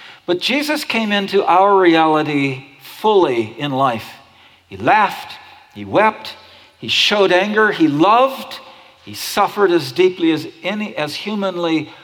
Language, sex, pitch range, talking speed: English, male, 150-205 Hz, 130 wpm